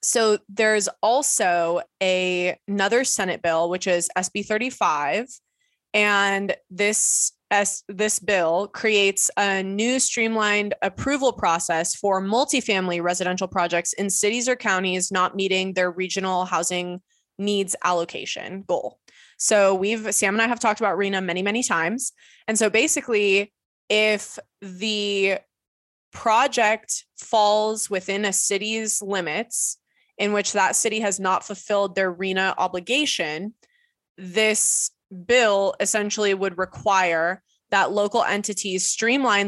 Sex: female